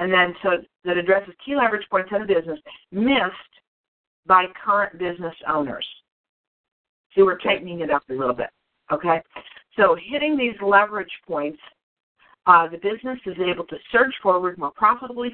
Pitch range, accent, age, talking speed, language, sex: 150-195 Hz, American, 50-69, 155 wpm, English, female